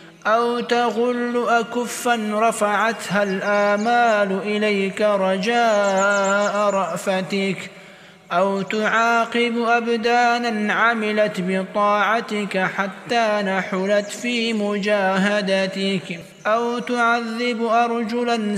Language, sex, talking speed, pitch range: Turkish, male, 65 wpm, 195-215 Hz